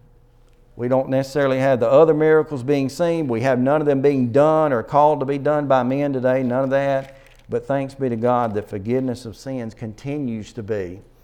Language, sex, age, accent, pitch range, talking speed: English, male, 50-69, American, 120-145 Hz, 210 wpm